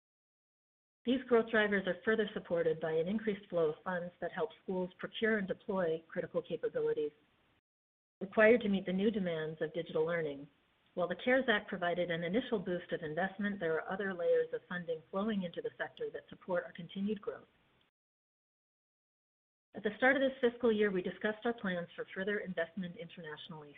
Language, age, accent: English, 40-59, American